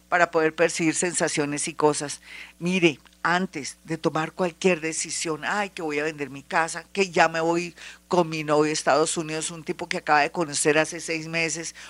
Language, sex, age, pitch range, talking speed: Spanish, female, 50-69, 165-195 Hz, 190 wpm